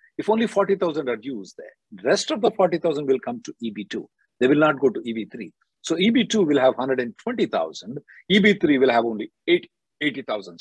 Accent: Indian